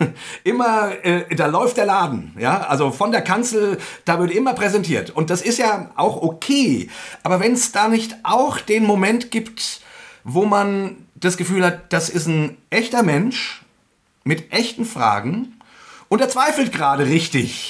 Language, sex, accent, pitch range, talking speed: German, male, German, 160-220 Hz, 165 wpm